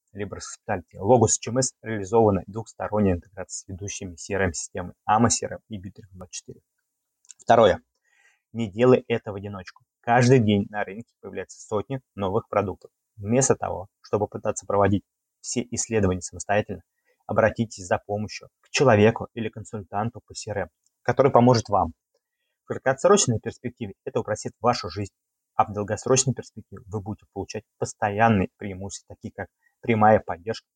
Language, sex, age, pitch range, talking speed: Russian, male, 20-39, 100-120 Hz, 135 wpm